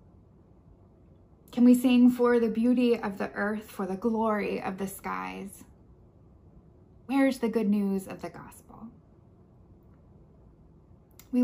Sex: female